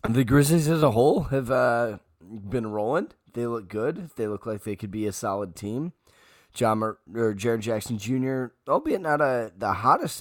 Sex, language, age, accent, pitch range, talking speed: male, English, 10-29, American, 95-125 Hz, 190 wpm